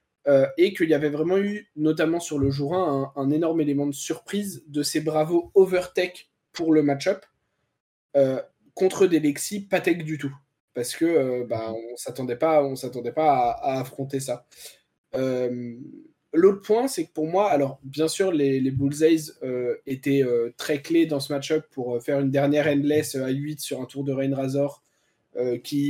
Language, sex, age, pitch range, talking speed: French, male, 20-39, 135-175 Hz, 190 wpm